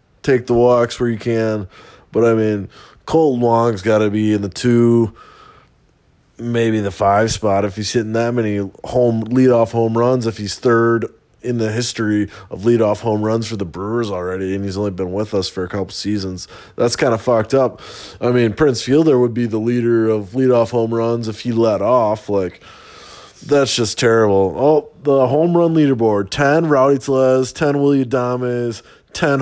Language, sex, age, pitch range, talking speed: English, male, 20-39, 100-120 Hz, 185 wpm